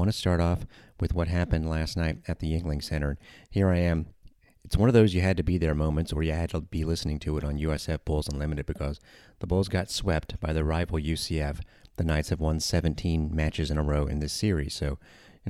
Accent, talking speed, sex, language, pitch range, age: American, 225 wpm, male, English, 75-90 Hz, 30-49